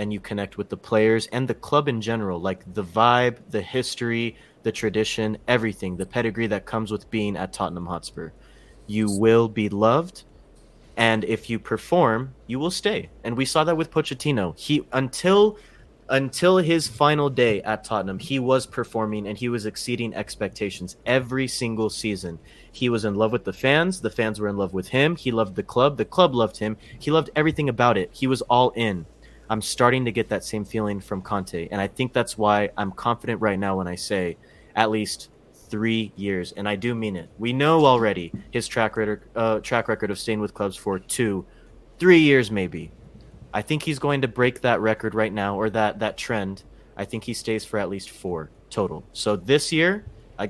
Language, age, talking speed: English, 20-39, 200 wpm